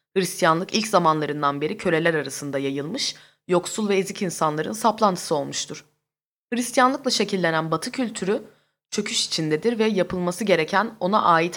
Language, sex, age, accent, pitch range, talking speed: Turkish, female, 20-39, native, 155-210 Hz, 125 wpm